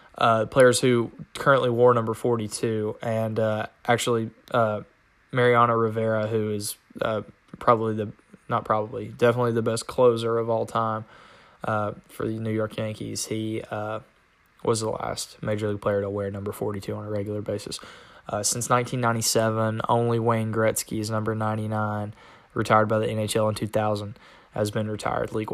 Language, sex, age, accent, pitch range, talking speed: English, male, 10-29, American, 110-120 Hz, 155 wpm